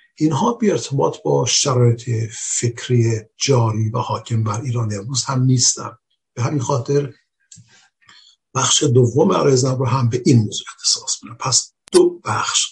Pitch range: 115-135 Hz